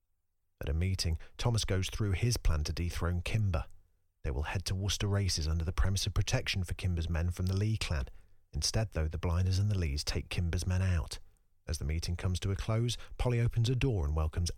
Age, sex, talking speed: 40-59, male, 220 wpm